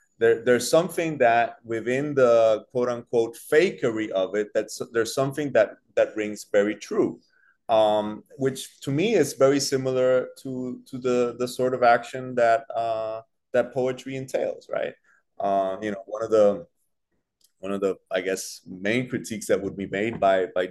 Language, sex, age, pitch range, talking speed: English, male, 30-49, 105-135 Hz, 170 wpm